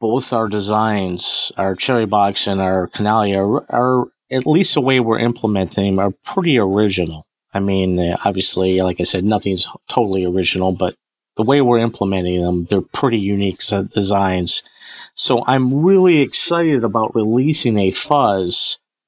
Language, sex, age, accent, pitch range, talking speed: English, male, 50-69, American, 95-120 Hz, 150 wpm